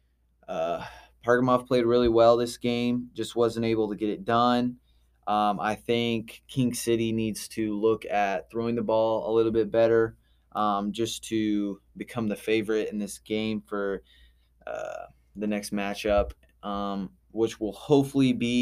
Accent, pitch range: American, 100-115 Hz